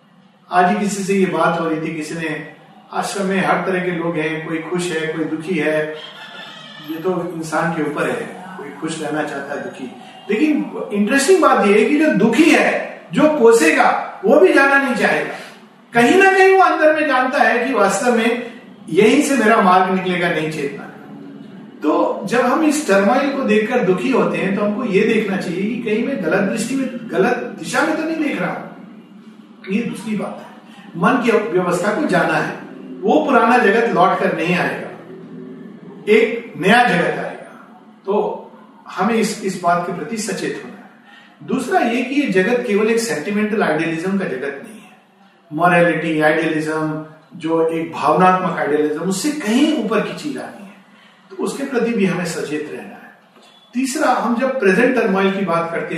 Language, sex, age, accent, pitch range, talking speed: Hindi, male, 40-59, native, 175-235 Hz, 155 wpm